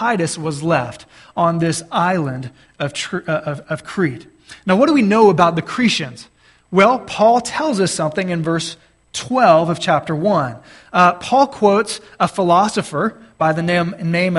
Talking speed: 160 wpm